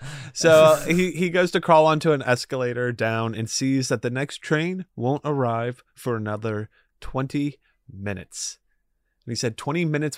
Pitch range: 95-130 Hz